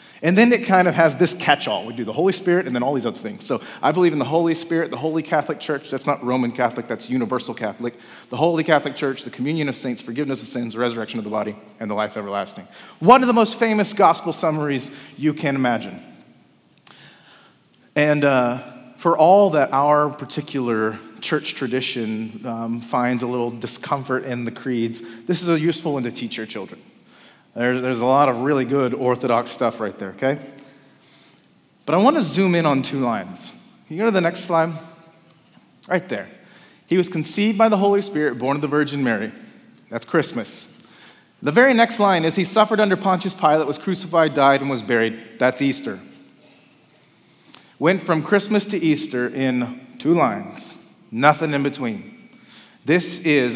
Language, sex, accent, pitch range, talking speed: English, male, American, 125-170 Hz, 185 wpm